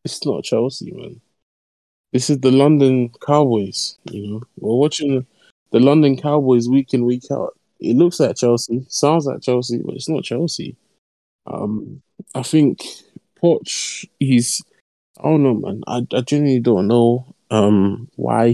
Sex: male